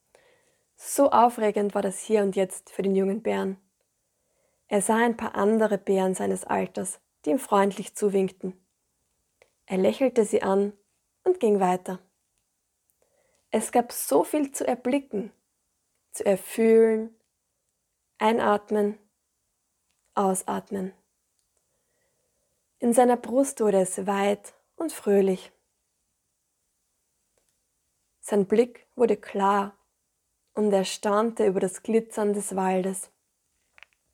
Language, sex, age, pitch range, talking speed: German, female, 20-39, 195-230 Hz, 105 wpm